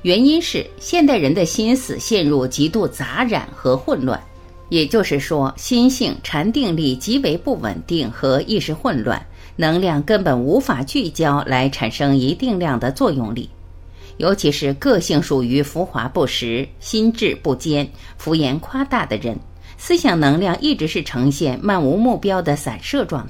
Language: Chinese